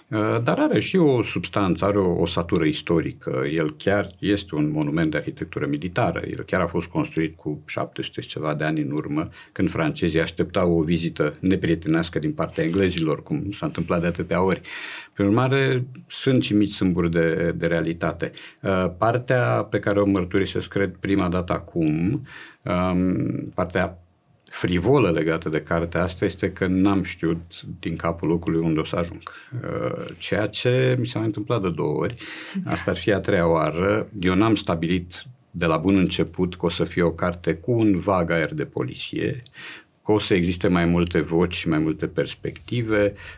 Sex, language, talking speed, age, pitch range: male, Romanian, 170 wpm, 50-69, 85-115 Hz